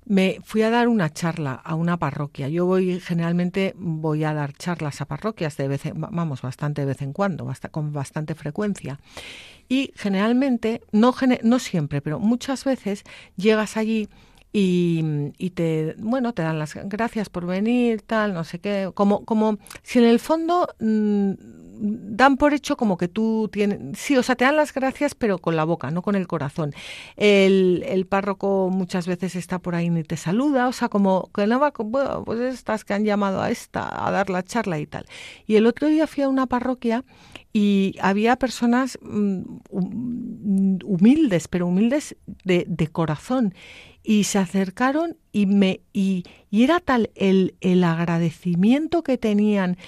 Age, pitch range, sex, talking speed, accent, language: 50-69, 170-230 Hz, female, 170 wpm, Spanish, Spanish